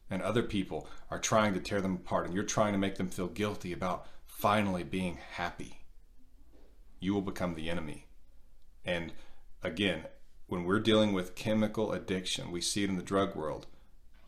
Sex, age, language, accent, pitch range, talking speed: male, 40-59, English, American, 85-105 Hz, 170 wpm